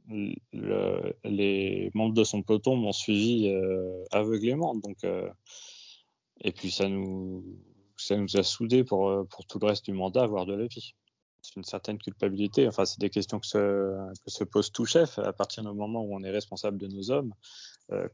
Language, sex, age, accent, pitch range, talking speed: French, male, 20-39, French, 95-110 Hz, 190 wpm